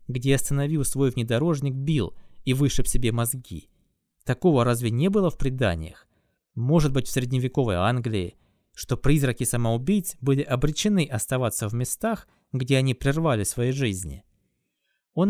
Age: 20-39